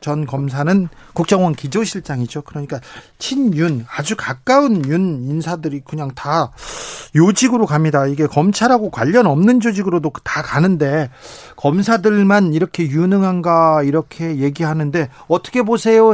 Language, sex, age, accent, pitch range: Korean, male, 40-59, native, 155-205 Hz